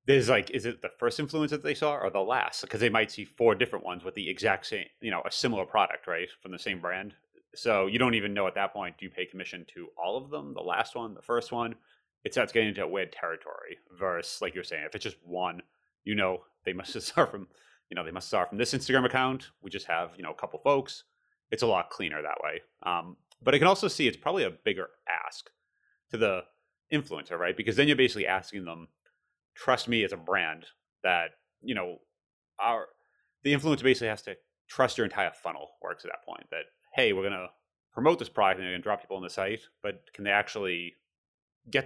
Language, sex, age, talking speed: English, male, 30-49, 230 wpm